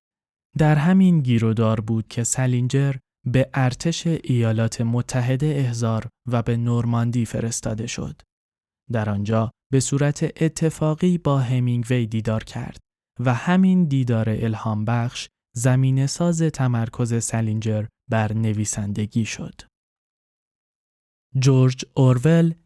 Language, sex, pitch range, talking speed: Persian, male, 110-135 Hz, 110 wpm